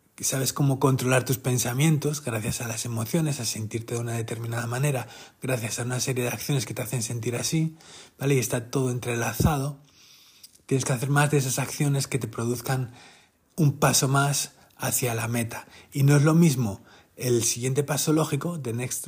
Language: Spanish